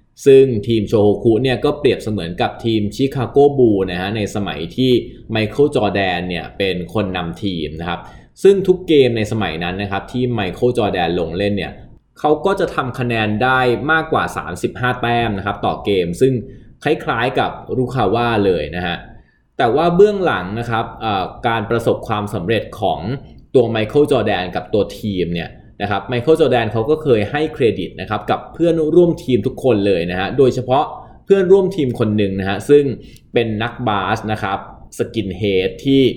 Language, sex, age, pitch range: Thai, male, 20-39, 100-135 Hz